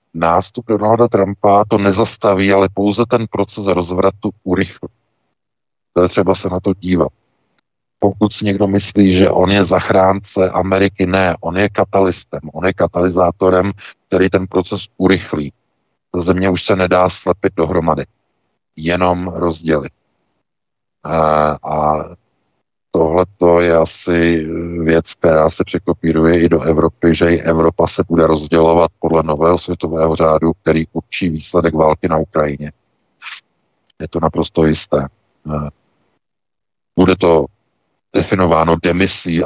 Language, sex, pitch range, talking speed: Czech, male, 80-95 Hz, 120 wpm